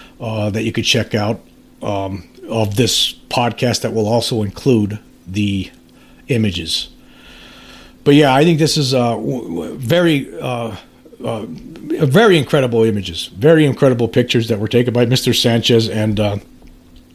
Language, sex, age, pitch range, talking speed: English, male, 50-69, 115-165 Hz, 155 wpm